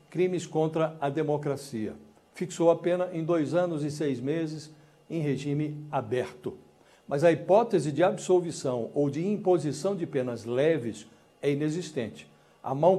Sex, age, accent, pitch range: male, 60-79, Brazilian, 140-170 Hz